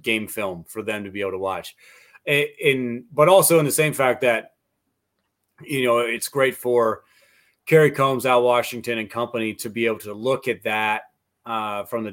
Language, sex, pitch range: English, male, 105-120 Hz